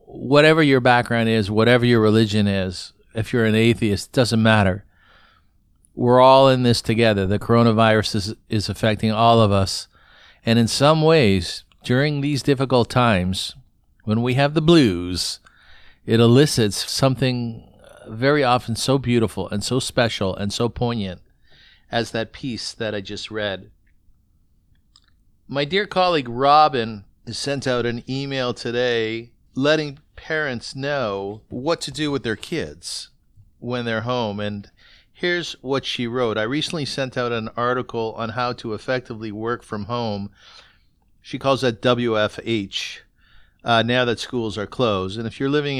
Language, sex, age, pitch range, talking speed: English, male, 50-69, 105-130 Hz, 150 wpm